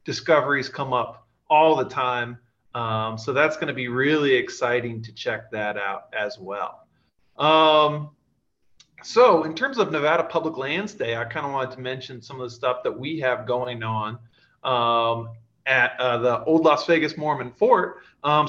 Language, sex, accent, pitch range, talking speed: English, male, American, 130-170 Hz, 175 wpm